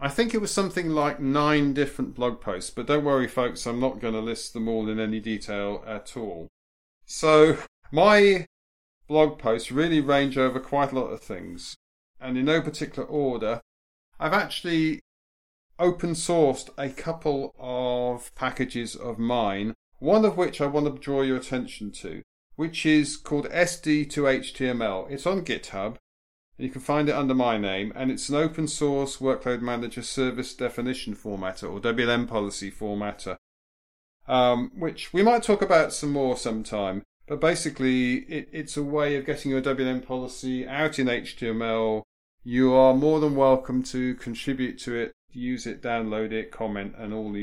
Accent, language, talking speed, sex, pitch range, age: British, English, 170 wpm, male, 110-145 Hz, 40-59